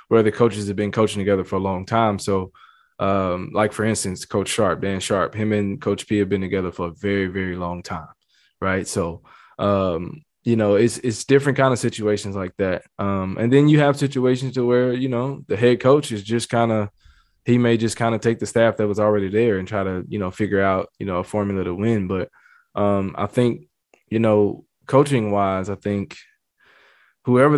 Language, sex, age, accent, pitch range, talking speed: English, male, 20-39, American, 95-115 Hz, 220 wpm